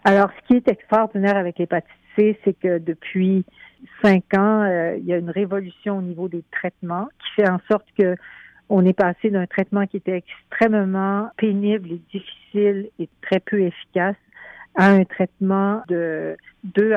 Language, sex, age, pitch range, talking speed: French, female, 60-79, 180-205 Hz, 170 wpm